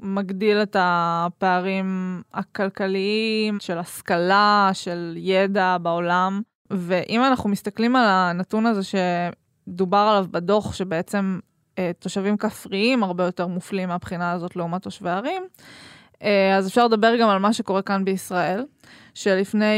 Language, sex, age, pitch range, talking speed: Hebrew, female, 20-39, 185-215 Hz, 125 wpm